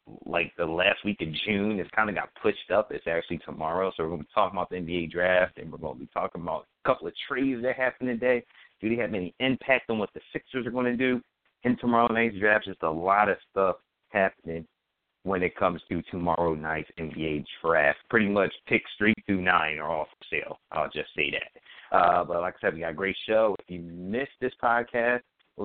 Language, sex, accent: English, male, American